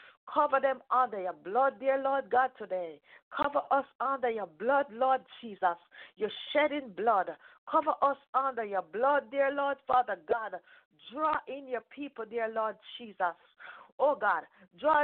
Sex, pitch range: female, 215-290 Hz